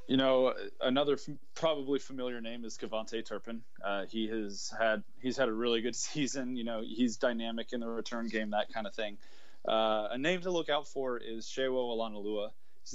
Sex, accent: male, American